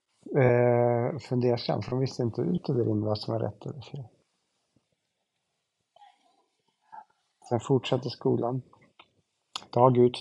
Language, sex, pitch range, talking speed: Swedish, male, 120-135 Hz, 105 wpm